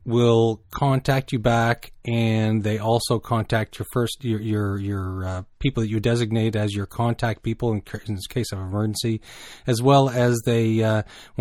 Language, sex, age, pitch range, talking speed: English, male, 30-49, 105-120 Hz, 175 wpm